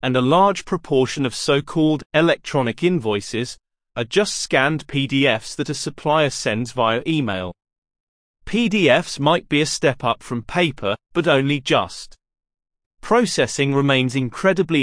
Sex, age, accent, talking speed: male, 30-49, British, 130 wpm